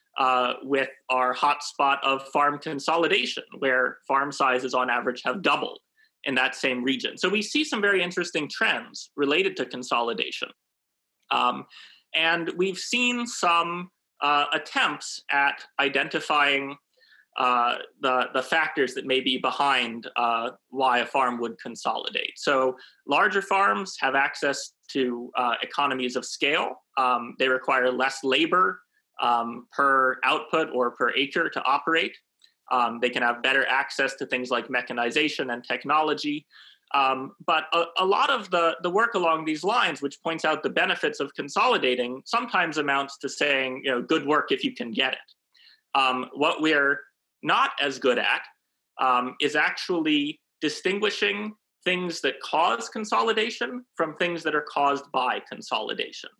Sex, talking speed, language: male, 150 wpm, English